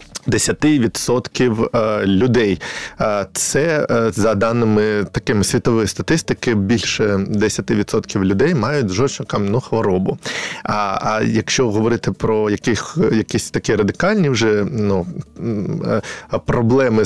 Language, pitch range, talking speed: Ukrainian, 105-135 Hz, 90 wpm